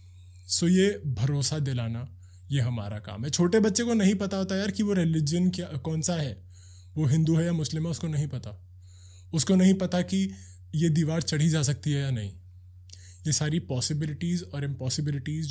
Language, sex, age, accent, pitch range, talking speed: Hindi, male, 20-39, native, 95-150 Hz, 185 wpm